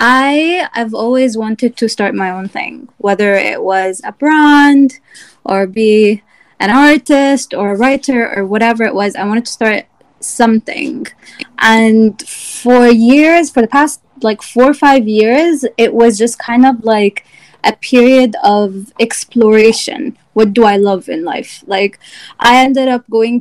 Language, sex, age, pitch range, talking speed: English, female, 20-39, 205-250 Hz, 160 wpm